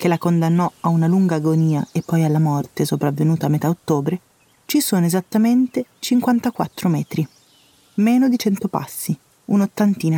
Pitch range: 165-210 Hz